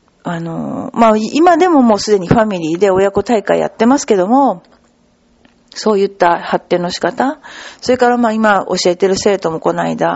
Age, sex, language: 40-59, female, Japanese